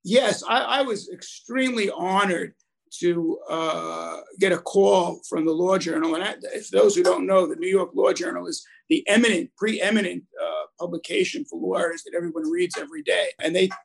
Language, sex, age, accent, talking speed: English, male, 50-69, American, 180 wpm